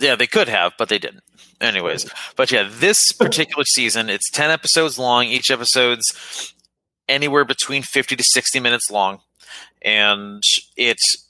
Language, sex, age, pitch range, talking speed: English, male, 30-49, 105-140 Hz, 150 wpm